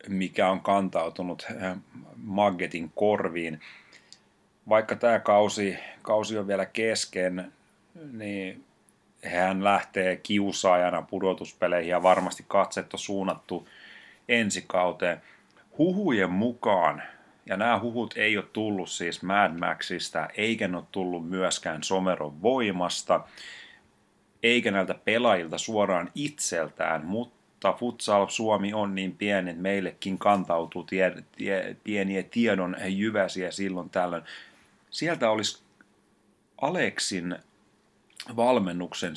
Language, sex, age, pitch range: Finnish, male, 30-49, 90-105 Hz